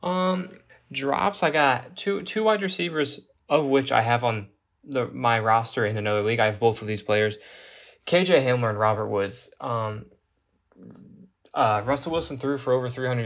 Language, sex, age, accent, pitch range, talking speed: English, male, 10-29, American, 105-125 Hz, 170 wpm